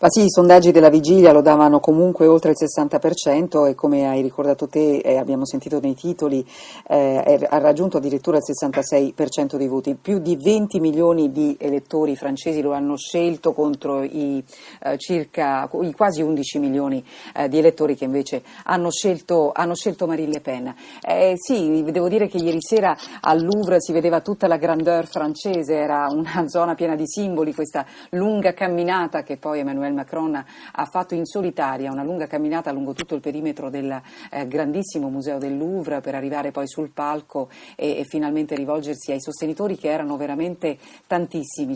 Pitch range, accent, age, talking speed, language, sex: 145-175 Hz, native, 40-59, 175 wpm, Italian, female